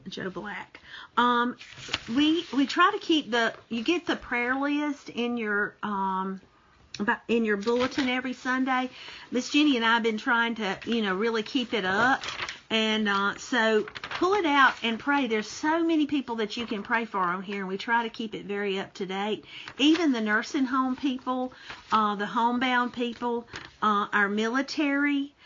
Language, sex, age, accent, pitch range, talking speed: English, female, 50-69, American, 205-260 Hz, 180 wpm